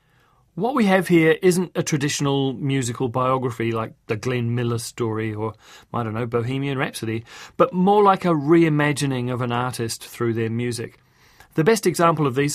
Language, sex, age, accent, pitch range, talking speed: English, male, 30-49, British, 120-160 Hz, 170 wpm